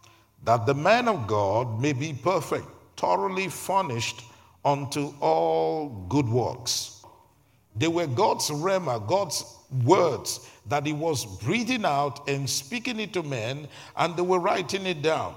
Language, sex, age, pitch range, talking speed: English, male, 50-69, 120-165 Hz, 140 wpm